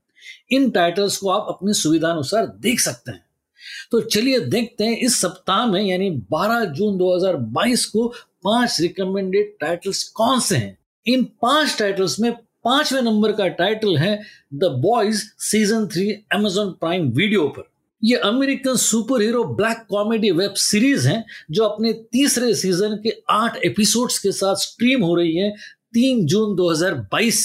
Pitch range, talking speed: 185-230 Hz, 120 wpm